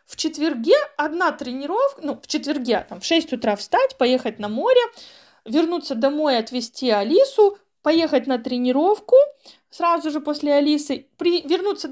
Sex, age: female, 20-39